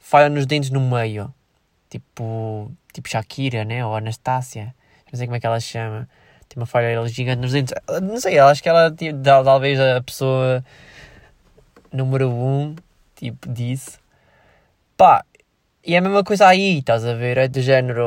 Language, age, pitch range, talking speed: Portuguese, 20-39, 125-165 Hz, 165 wpm